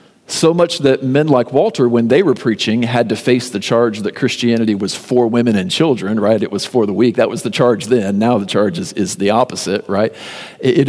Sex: male